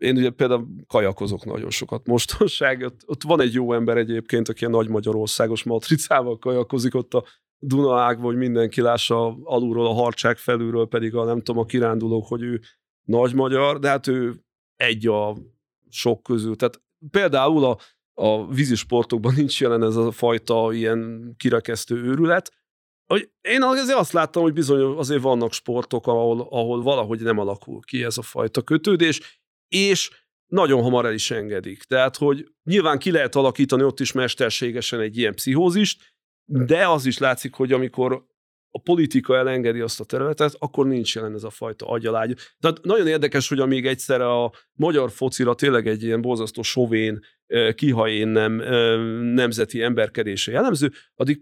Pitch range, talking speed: 115-135 Hz, 160 wpm